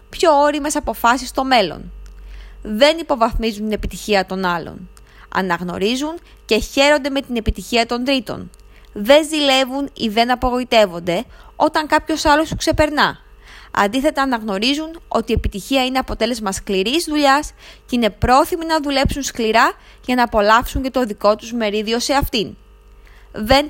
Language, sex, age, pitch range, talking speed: Greek, female, 20-39, 215-285 Hz, 140 wpm